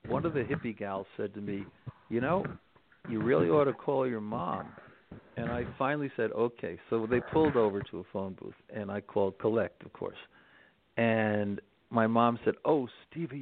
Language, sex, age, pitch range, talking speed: English, male, 50-69, 110-145 Hz, 190 wpm